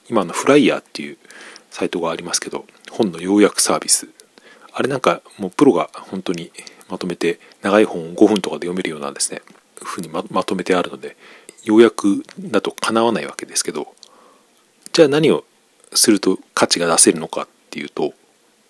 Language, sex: Japanese, male